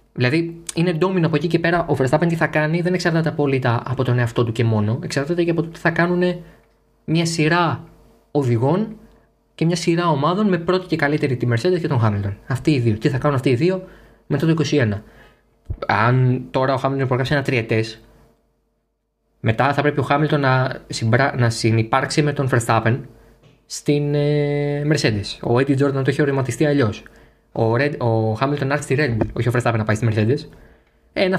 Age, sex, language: 20-39, male, Greek